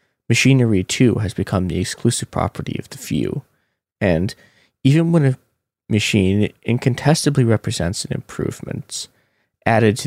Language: English